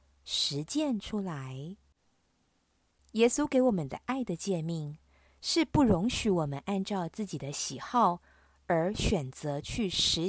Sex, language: female, Chinese